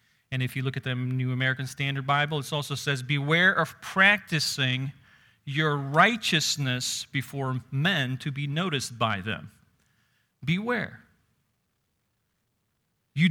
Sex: male